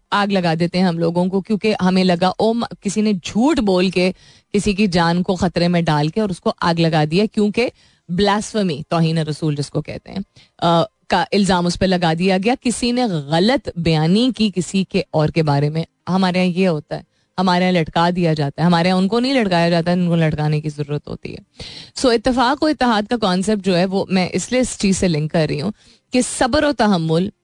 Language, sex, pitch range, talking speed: Hindi, female, 165-220 Hz, 205 wpm